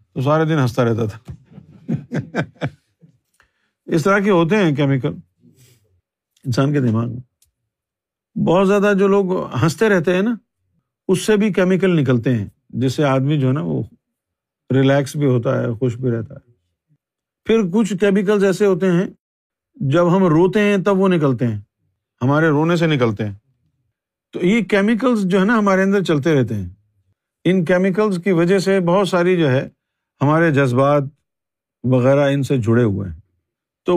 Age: 50-69